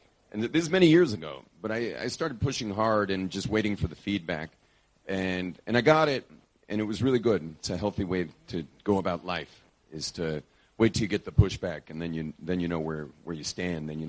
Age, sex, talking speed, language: 40-59, male, 240 wpm, English